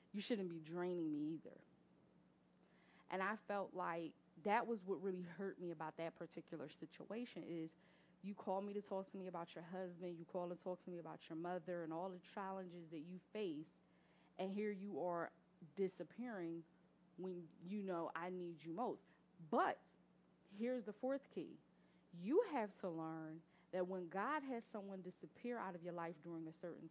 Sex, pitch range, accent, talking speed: female, 170-195 Hz, American, 180 wpm